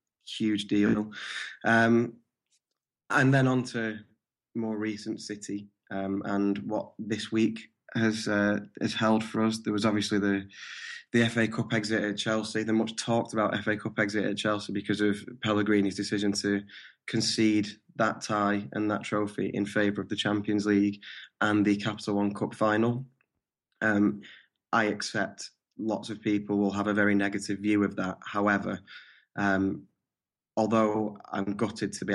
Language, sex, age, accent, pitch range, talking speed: English, male, 10-29, British, 100-110 Hz, 155 wpm